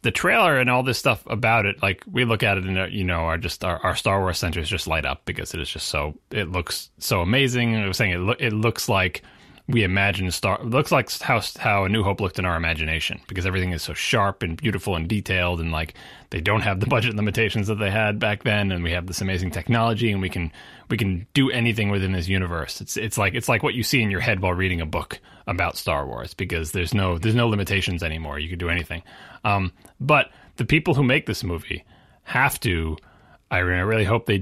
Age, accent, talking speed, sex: 30-49, American, 245 wpm, male